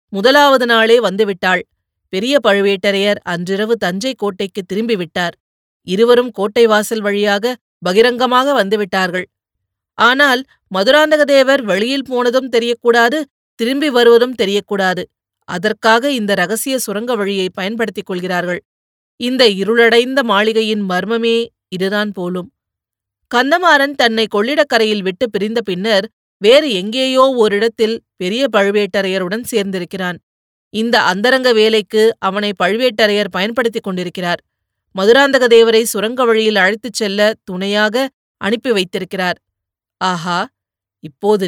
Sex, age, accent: female, 30-49, native